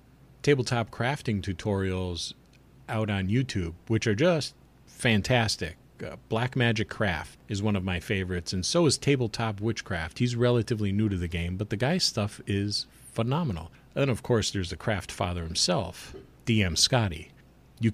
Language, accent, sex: English, American, male